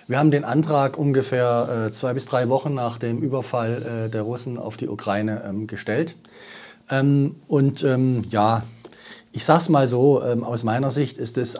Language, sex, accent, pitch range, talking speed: German, male, German, 120-150 Hz, 155 wpm